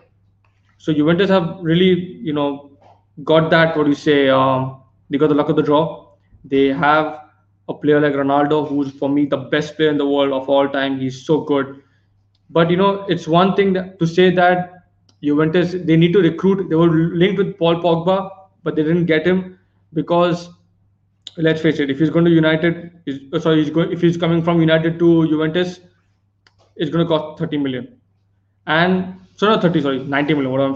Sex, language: male, English